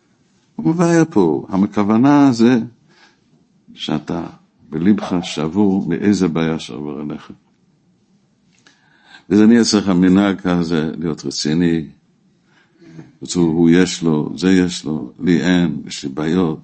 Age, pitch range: 60-79, 85-115 Hz